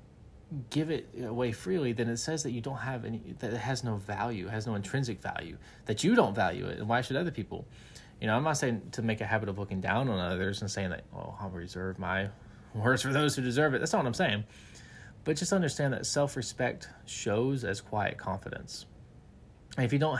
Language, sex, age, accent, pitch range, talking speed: English, male, 20-39, American, 105-130 Hz, 225 wpm